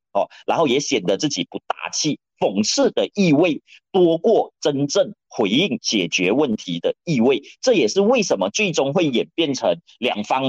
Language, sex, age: Chinese, male, 30-49